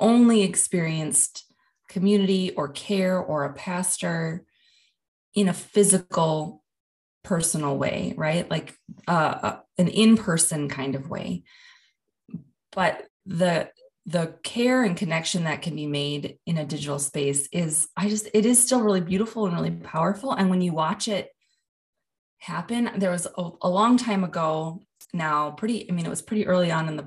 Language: English